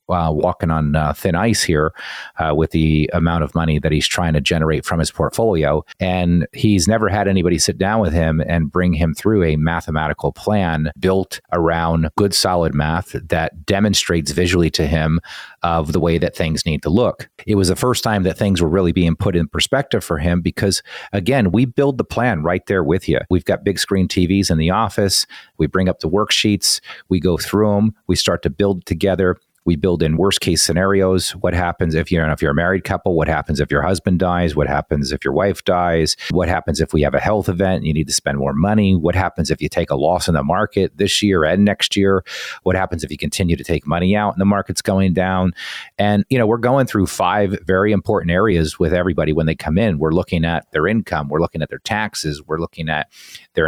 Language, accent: English, American